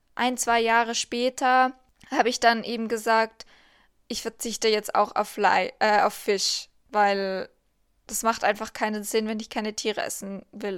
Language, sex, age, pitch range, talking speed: German, female, 20-39, 225-255 Hz, 150 wpm